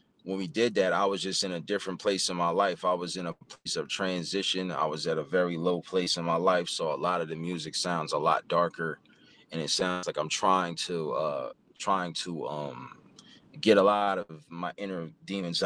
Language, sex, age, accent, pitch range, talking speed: English, male, 20-39, American, 85-95 Hz, 225 wpm